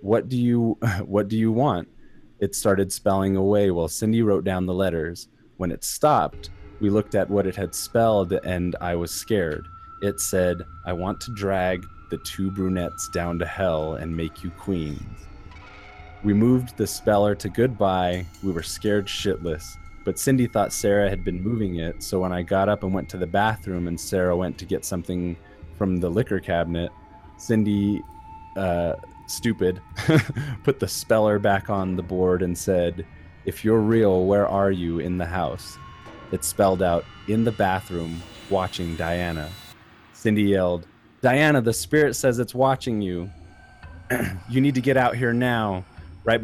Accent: American